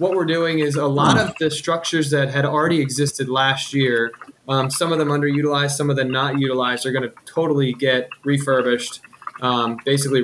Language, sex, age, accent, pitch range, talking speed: English, male, 20-39, American, 130-150 Hz, 195 wpm